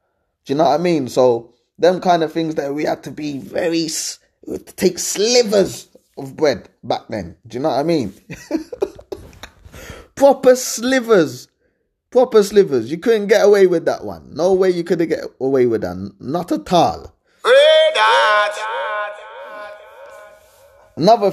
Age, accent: 20-39, British